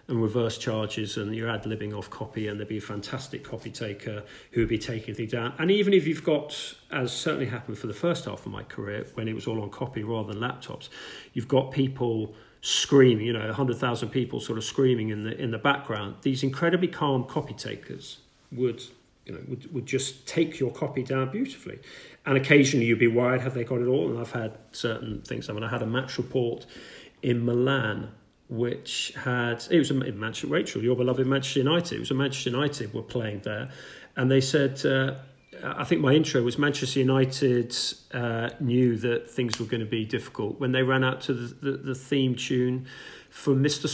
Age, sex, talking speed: 40-59, male, 205 wpm